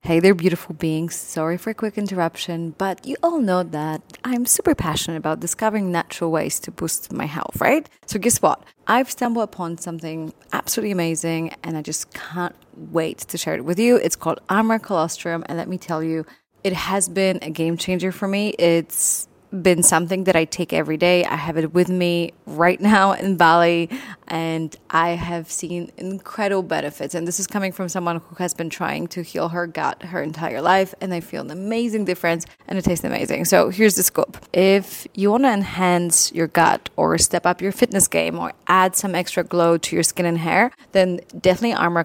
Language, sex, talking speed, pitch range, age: English, female, 205 wpm, 170-195 Hz, 20-39